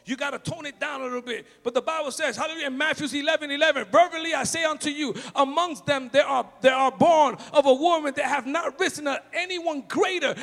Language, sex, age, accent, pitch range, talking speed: English, male, 40-59, American, 280-375 Hz, 225 wpm